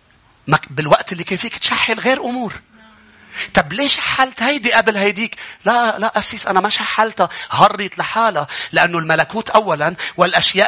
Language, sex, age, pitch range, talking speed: English, male, 30-49, 175-275 Hz, 140 wpm